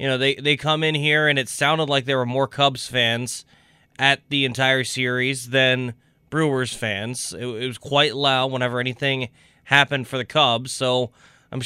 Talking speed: 185 wpm